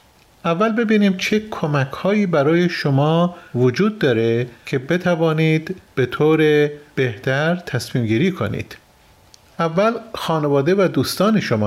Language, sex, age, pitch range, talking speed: Persian, male, 40-59, 130-175 Hz, 105 wpm